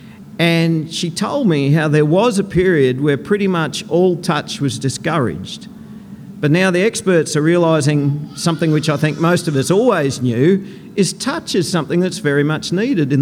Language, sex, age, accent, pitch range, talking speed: English, male, 50-69, Australian, 140-195 Hz, 180 wpm